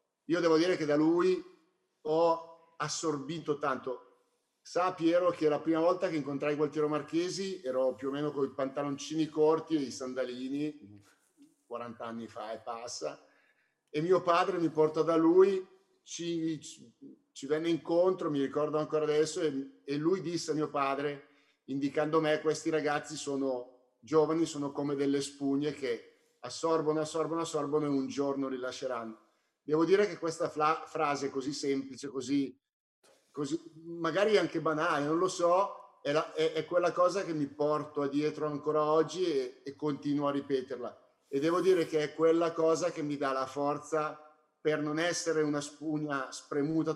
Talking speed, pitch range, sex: 160 wpm, 140-165 Hz, male